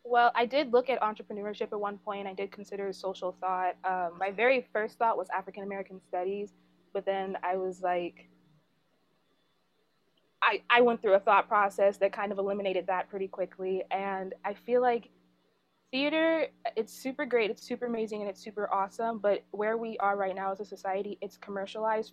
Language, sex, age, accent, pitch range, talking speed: English, female, 20-39, American, 190-220 Hz, 185 wpm